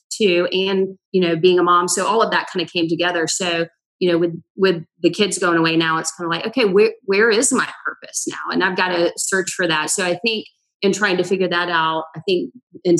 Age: 30-49